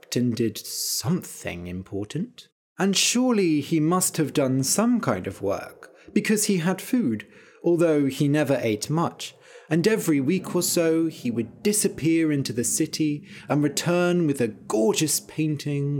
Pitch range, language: 115-165 Hz, English